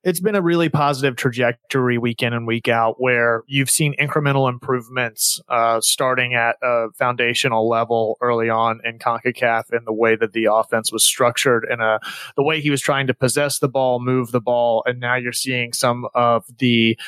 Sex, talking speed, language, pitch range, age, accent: male, 190 wpm, English, 115-135 Hz, 30-49, American